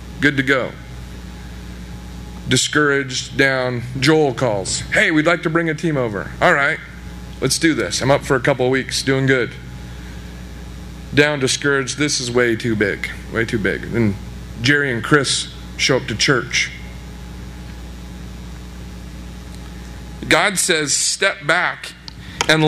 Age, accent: 40-59, American